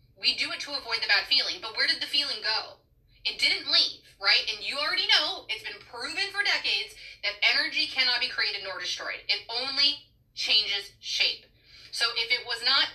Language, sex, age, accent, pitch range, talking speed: English, female, 30-49, American, 190-275 Hz, 200 wpm